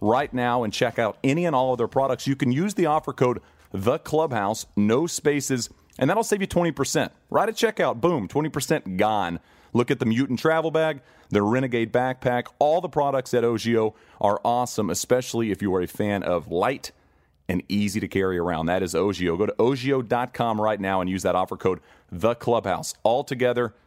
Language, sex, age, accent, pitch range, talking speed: English, male, 40-59, American, 100-135 Hz, 195 wpm